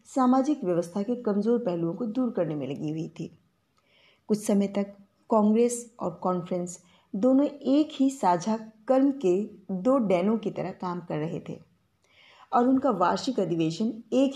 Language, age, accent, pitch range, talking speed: Hindi, 20-39, native, 180-245 Hz, 155 wpm